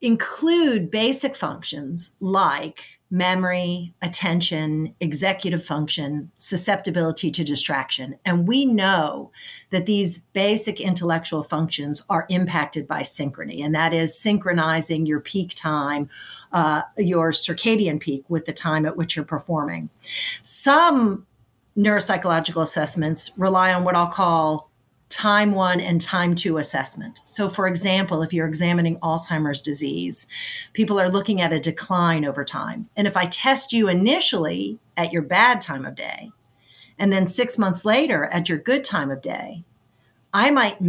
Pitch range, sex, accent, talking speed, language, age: 155-200 Hz, female, American, 140 wpm, English, 40-59